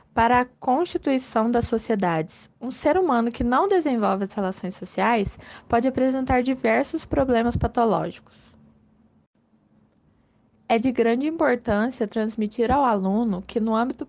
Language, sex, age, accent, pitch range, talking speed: Portuguese, female, 20-39, Brazilian, 220-270 Hz, 125 wpm